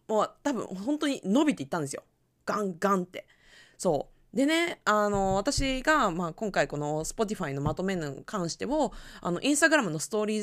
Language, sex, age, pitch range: Japanese, female, 20-39, 180-260 Hz